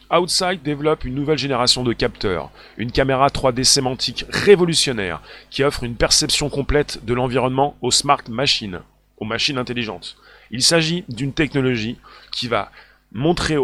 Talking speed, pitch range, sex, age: 140 wpm, 120-155 Hz, male, 30-49